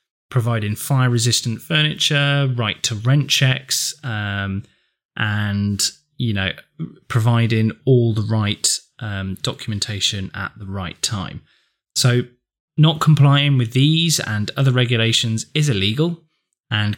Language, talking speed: English, 115 wpm